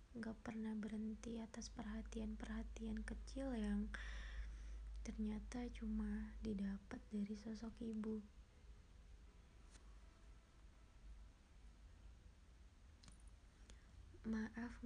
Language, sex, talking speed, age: Indonesian, female, 55 wpm, 20-39